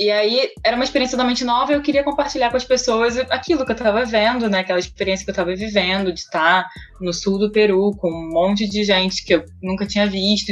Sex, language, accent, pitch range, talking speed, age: female, Portuguese, Brazilian, 185-245 Hz, 250 wpm, 20-39